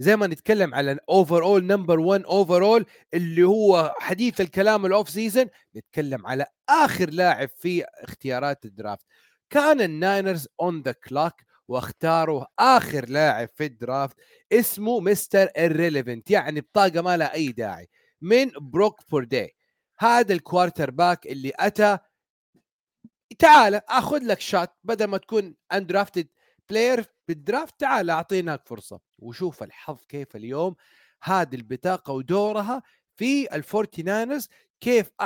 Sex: male